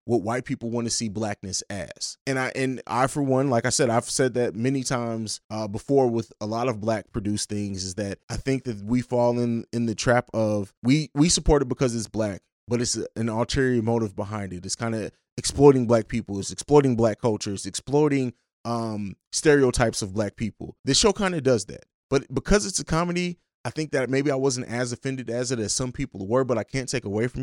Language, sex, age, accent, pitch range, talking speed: English, male, 20-39, American, 110-130 Hz, 230 wpm